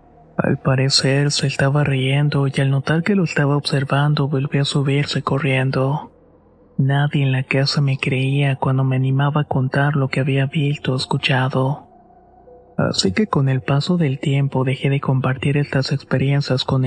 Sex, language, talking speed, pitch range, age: male, Spanish, 165 wpm, 135-145 Hz, 30-49